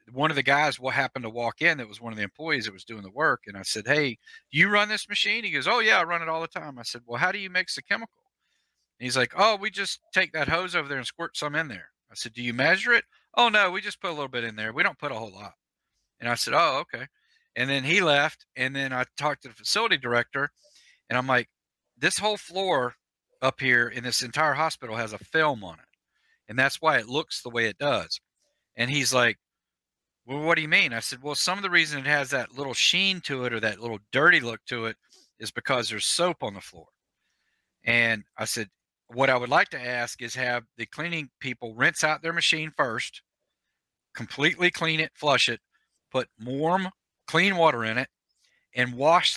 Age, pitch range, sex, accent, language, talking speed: 50-69, 120-170 Hz, male, American, English, 240 wpm